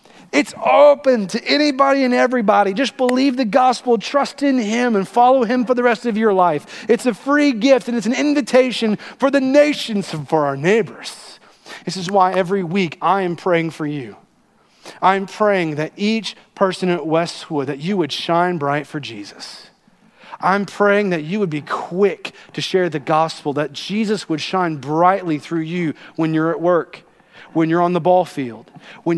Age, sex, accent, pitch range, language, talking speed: 40-59, male, American, 165-220 Hz, English, 185 wpm